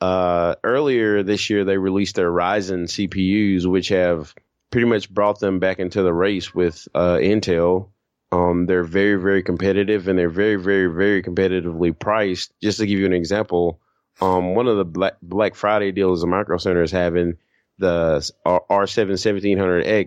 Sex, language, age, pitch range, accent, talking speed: male, English, 30-49, 90-105 Hz, American, 165 wpm